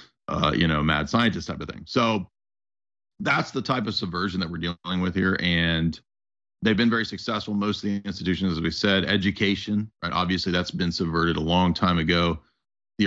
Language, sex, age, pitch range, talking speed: English, male, 40-59, 85-100 Hz, 195 wpm